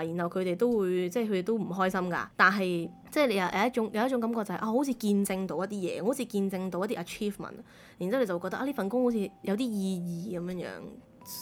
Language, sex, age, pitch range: Chinese, female, 20-39, 175-215 Hz